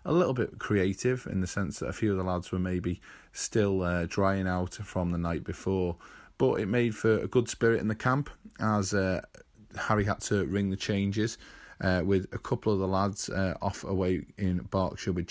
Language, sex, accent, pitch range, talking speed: English, male, British, 95-105 Hz, 210 wpm